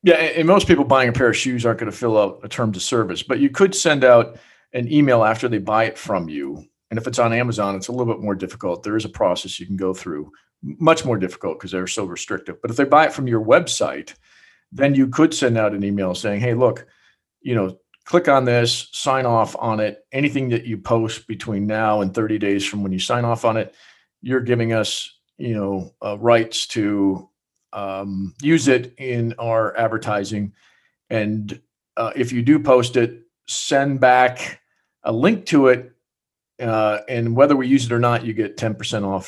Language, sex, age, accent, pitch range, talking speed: English, male, 50-69, American, 105-125 Hz, 210 wpm